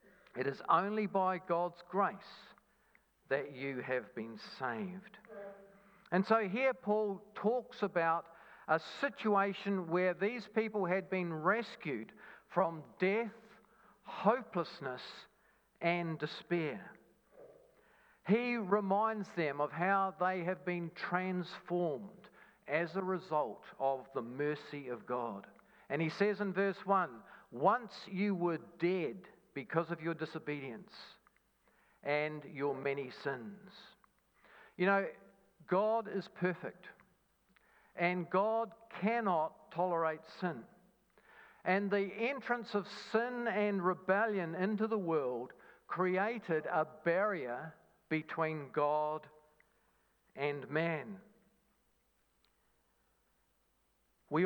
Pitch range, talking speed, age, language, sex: 160-210 Hz, 100 wpm, 50-69, English, male